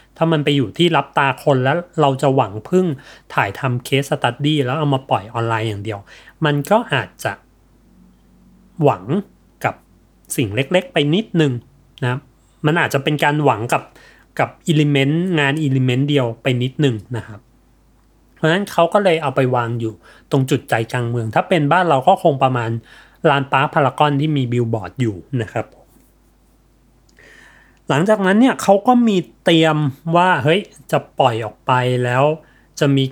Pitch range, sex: 120-155 Hz, male